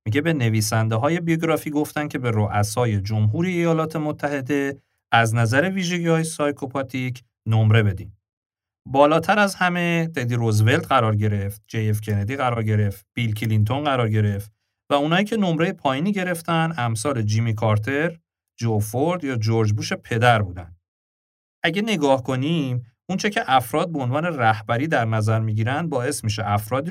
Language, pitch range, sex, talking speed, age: Persian, 110-155 Hz, male, 145 wpm, 40-59